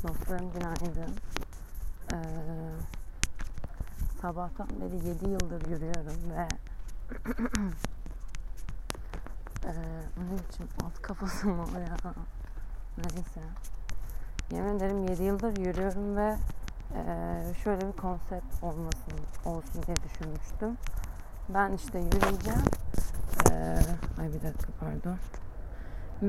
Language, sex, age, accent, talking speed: Turkish, female, 30-49, native, 90 wpm